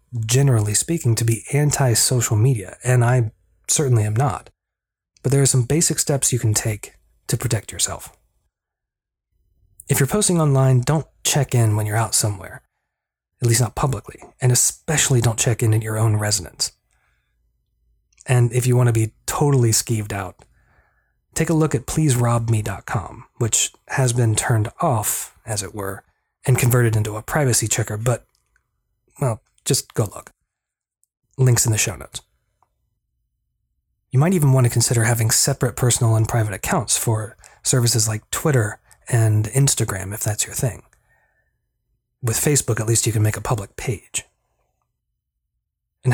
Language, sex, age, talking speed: English, male, 30-49, 155 wpm